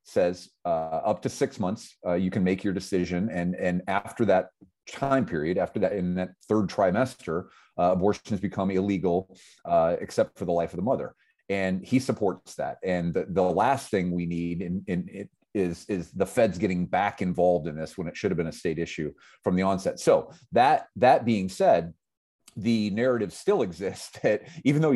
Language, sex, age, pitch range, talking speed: English, male, 30-49, 90-120 Hz, 200 wpm